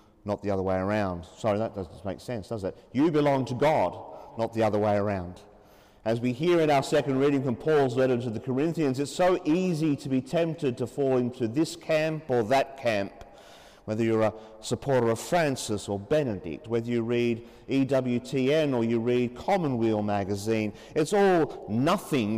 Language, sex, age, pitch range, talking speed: English, male, 40-59, 110-150 Hz, 180 wpm